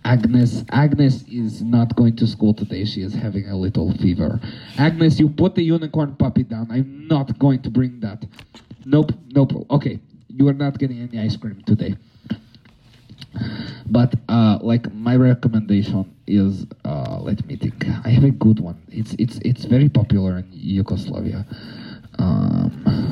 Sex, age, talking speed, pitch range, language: male, 30-49, 160 wpm, 105-130 Hz, English